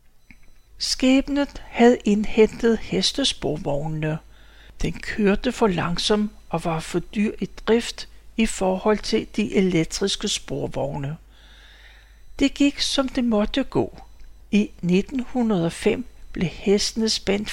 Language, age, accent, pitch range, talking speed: Danish, 60-79, native, 185-235 Hz, 105 wpm